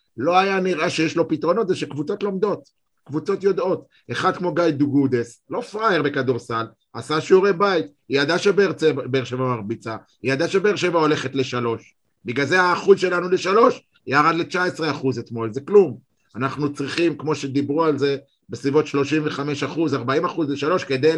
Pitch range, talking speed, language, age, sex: 130-165 Hz, 155 wpm, Hebrew, 50-69, male